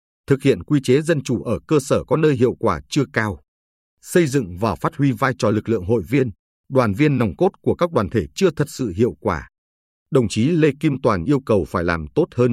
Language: Vietnamese